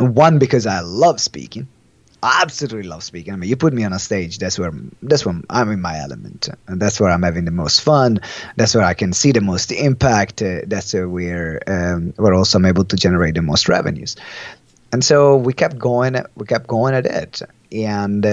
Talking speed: 215 wpm